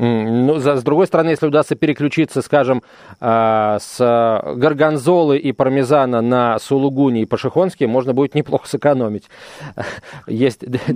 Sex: male